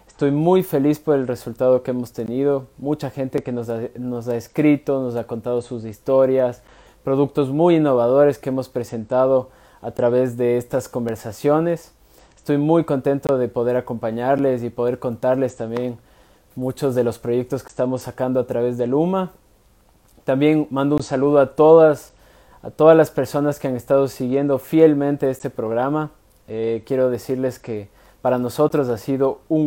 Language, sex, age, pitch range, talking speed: Spanish, male, 20-39, 125-145 Hz, 160 wpm